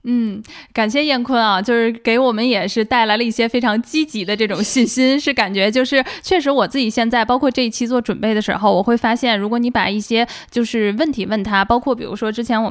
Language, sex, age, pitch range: Chinese, female, 10-29, 205-250 Hz